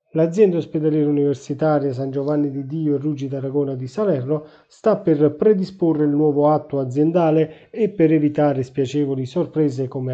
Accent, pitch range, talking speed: native, 135-165 Hz, 150 wpm